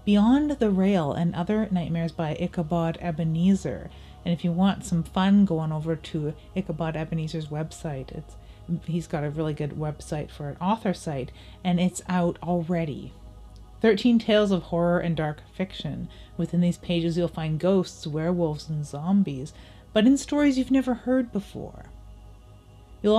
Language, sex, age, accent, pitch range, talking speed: English, female, 30-49, American, 160-200 Hz, 160 wpm